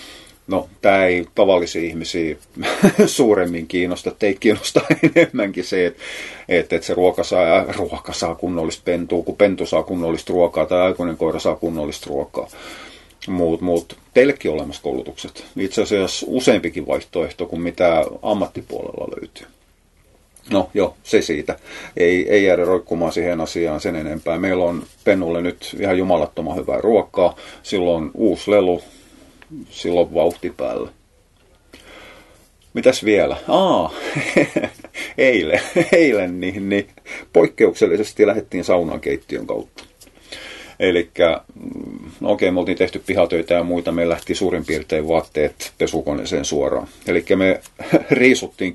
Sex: male